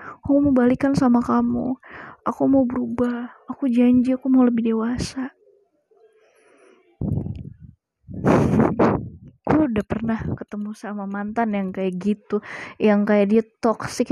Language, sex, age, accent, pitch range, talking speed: Indonesian, female, 20-39, native, 210-260 Hz, 115 wpm